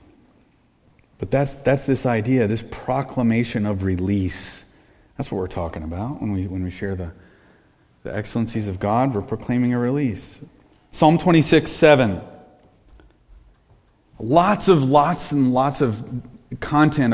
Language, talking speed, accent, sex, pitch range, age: English, 135 wpm, American, male, 105-135 Hz, 30-49